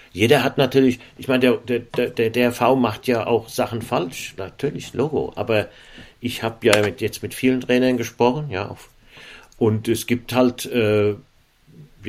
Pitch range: 115-130 Hz